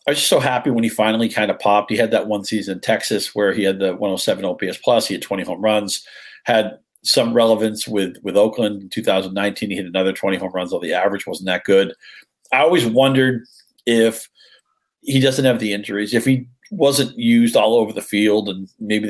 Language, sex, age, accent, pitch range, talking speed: English, male, 40-59, American, 100-125 Hz, 215 wpm